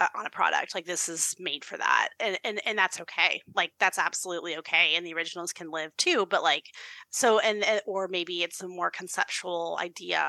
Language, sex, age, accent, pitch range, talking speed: English, female, 30-49, American, 170-200 Hz, 210 wpm